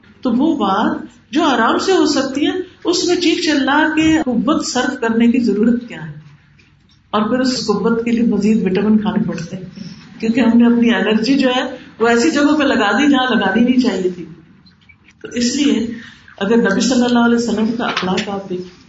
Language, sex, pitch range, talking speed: Urdu, female, 200-265 Hz, 205 wpm